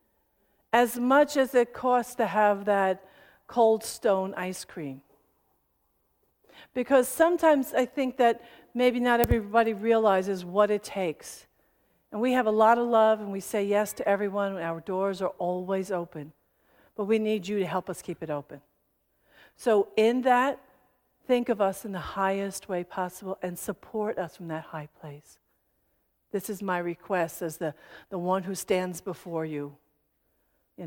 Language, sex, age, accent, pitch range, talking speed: English, female, 60-79, American, 180-225 Hz, 165 wpm